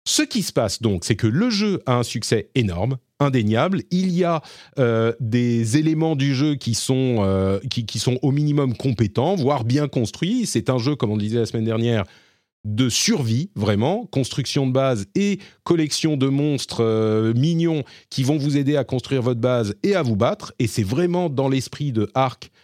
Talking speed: 200 wpm